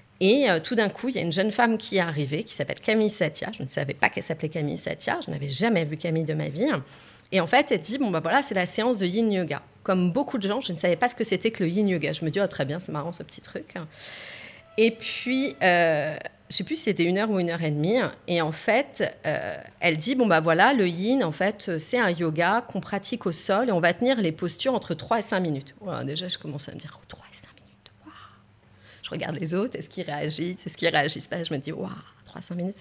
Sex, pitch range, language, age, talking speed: female, 155-210 Hz, French, 30-49, 275 wpm